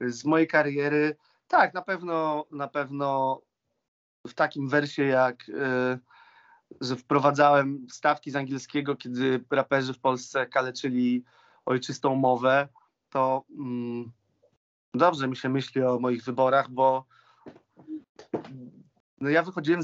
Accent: native